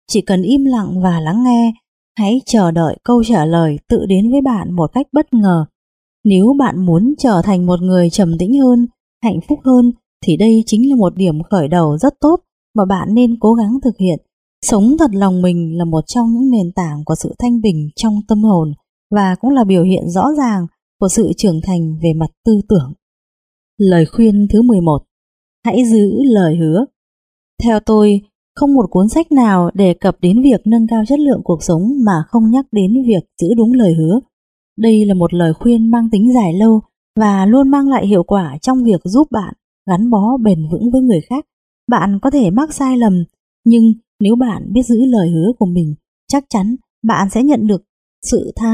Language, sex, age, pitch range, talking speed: Vietnamese, female, 20-39, 185-245 Hz, 205 wpm